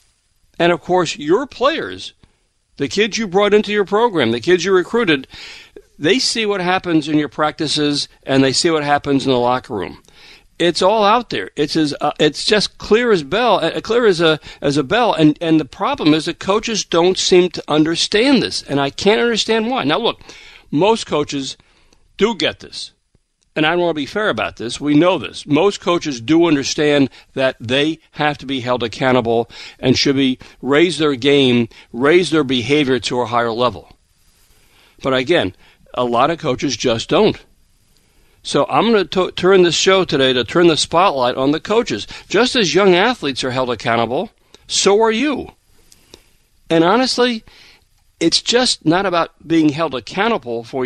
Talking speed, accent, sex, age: 180 wpm, American, male, 60-79